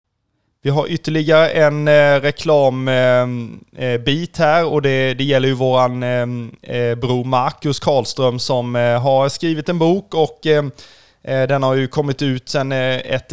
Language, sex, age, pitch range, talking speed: Swedish, male, 20-39, 125-145 Hz, 125 wpm